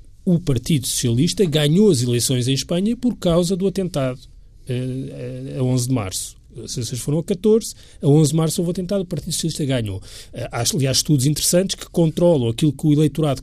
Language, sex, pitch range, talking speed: Portuguese, male, 125-180 Hz, 185 wpm